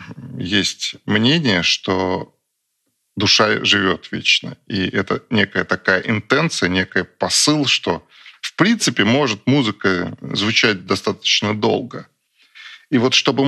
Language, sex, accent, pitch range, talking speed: Russian, male, native, 105-130 Hz, 105 wpm